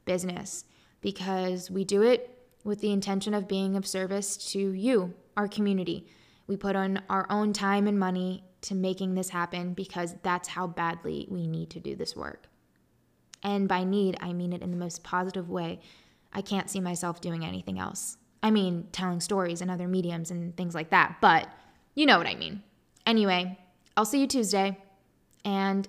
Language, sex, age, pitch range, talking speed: English, female, 10-29, 185-210 Hz, 185 wpm